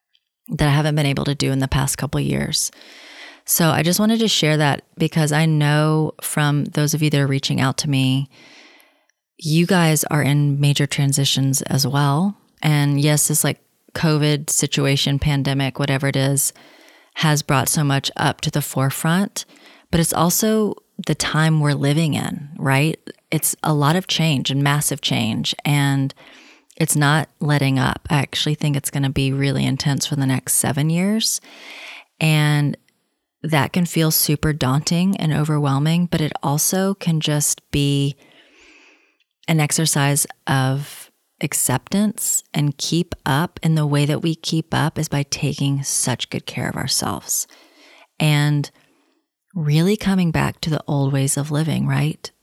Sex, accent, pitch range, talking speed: female, American, 140-165 Hz, 165 wpm